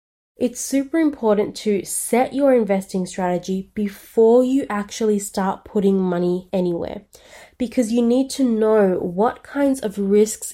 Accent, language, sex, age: Australian, English, female, 20-39